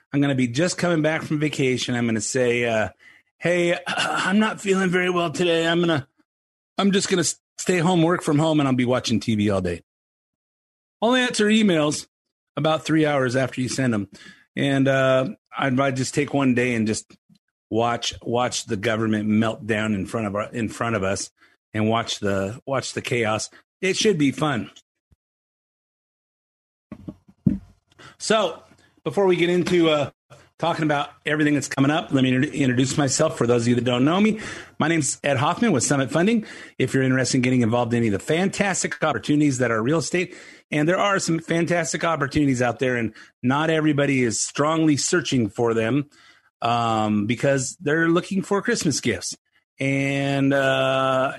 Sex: male